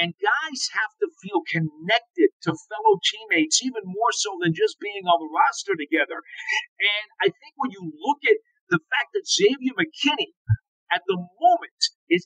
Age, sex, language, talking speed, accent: 50-69, male, English, 170 wpm, American